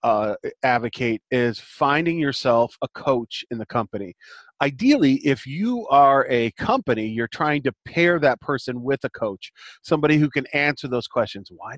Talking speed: 165 wpm